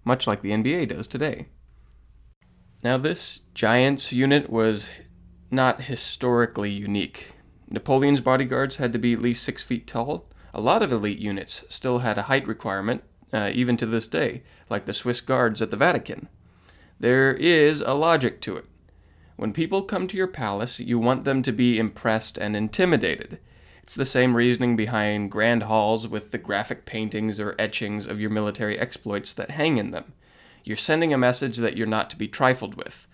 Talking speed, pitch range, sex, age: 175 wpm, 105-130 Hz, male, 20-39